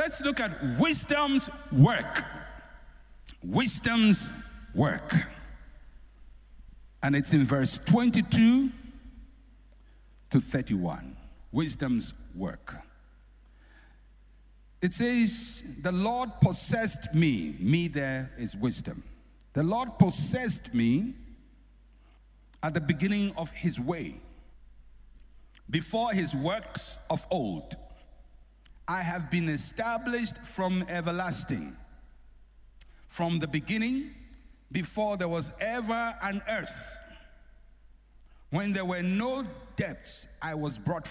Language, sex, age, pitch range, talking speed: English, male, 60-79, 155-230 Hz, 95 wpm